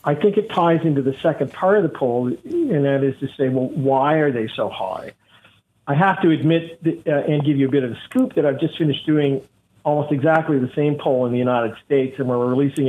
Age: 50-69